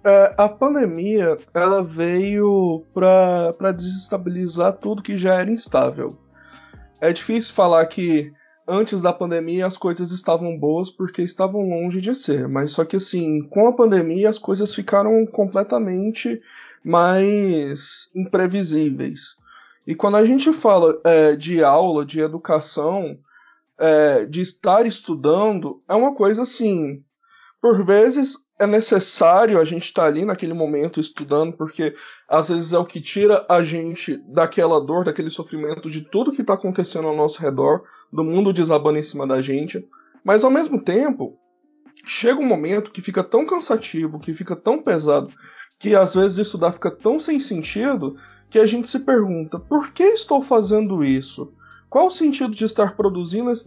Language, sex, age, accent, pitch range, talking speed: Portuguese, male, 20-39, Brazilian, 165-220 Hz, 150 wpm